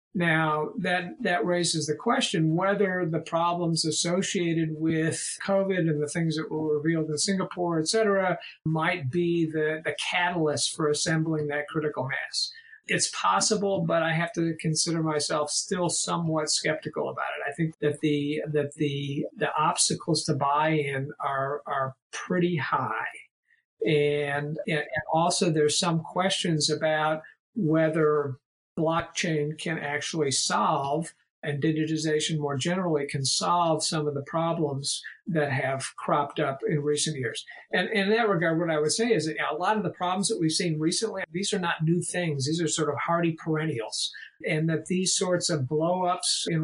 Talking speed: 160 wpm